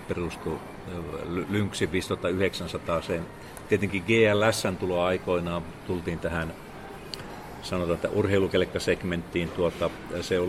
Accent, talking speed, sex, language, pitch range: native, 70 wpm, male, Finnish, 85-95 Hz